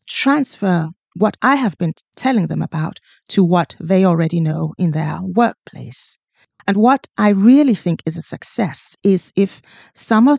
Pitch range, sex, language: 165-215 Hz, female, English